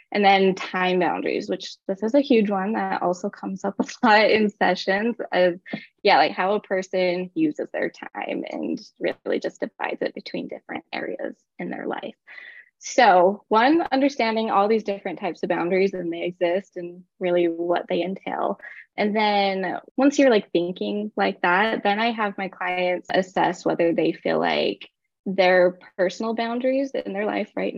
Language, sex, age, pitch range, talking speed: English, female, 10-29, 180-225 Hz, 175 wpm